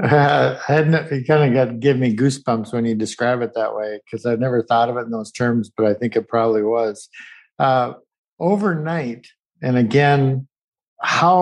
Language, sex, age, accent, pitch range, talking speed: English, male, 50-69, American, 115-140 Hz, 185 wpm